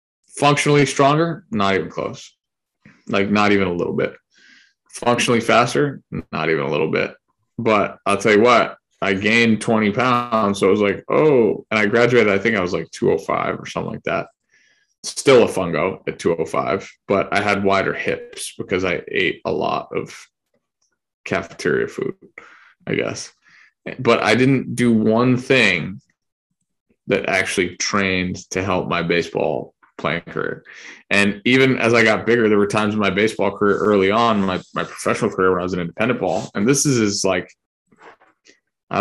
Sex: male